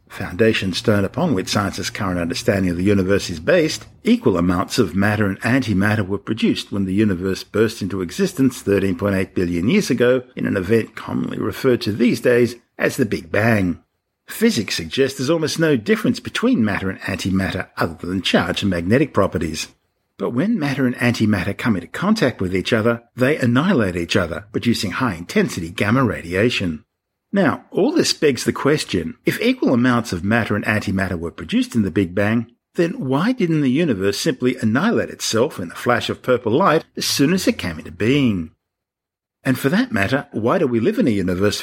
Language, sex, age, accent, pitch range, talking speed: English, male, 50-69, Australian, 95-130 Hz, 185 wpm